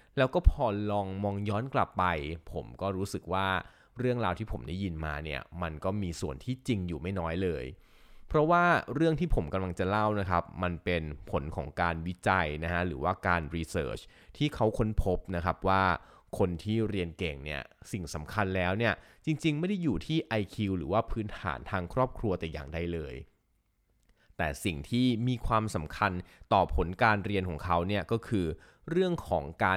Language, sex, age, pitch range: Thai, male, 20-39, 85-110 Hz